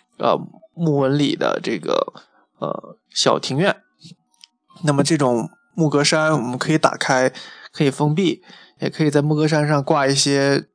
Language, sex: Chinese, male